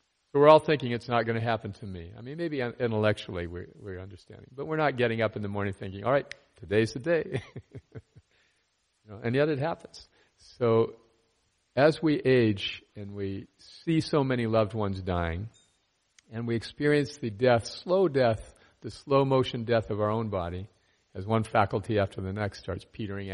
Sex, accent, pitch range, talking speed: male, American, 100-130 Hz, 180 wpm